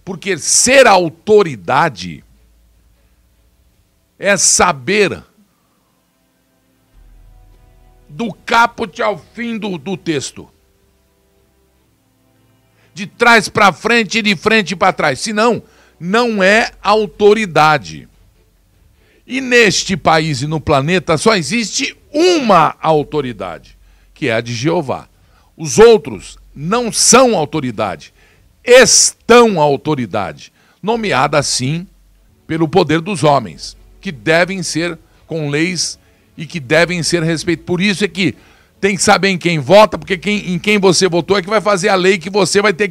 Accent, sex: Brazilian, male